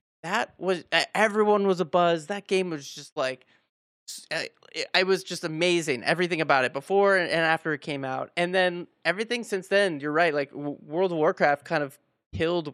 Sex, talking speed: male, 180 wpm